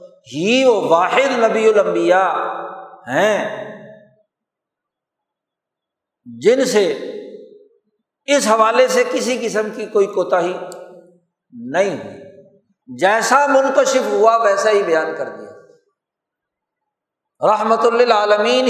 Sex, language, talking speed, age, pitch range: male, Urdu, 90 wpm, 60-79, 170-260 Hz